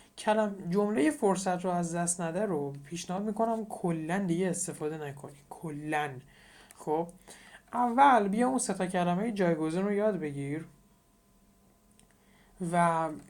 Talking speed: 115 wpm